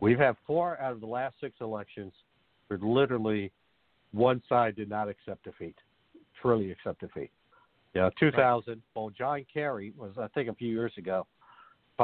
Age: 60-79